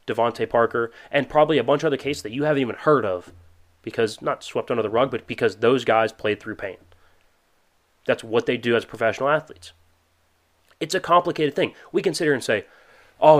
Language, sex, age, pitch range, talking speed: English, male, 30-49, 100-130 Hz, 195 wpm